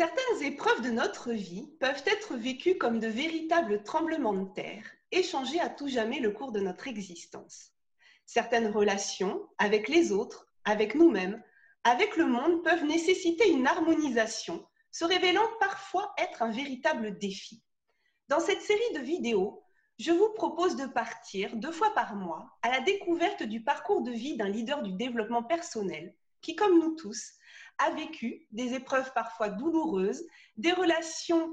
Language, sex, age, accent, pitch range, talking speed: French, female, 30-49, French, 235-360 Hz, 160 wpm